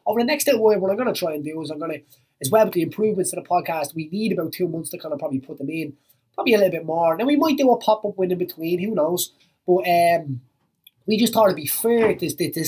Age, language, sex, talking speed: 20-39, English, male, 295 wpm